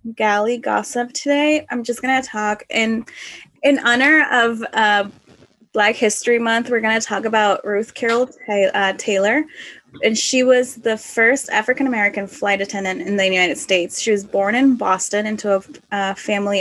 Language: English